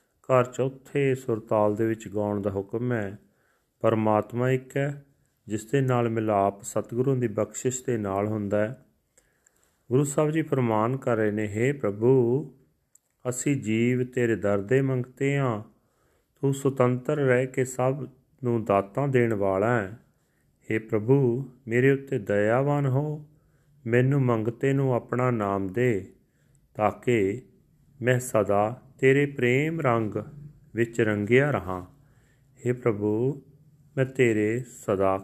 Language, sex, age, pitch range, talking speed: Punjabi, male, 40-59, 110-135 Hz, 115 wpm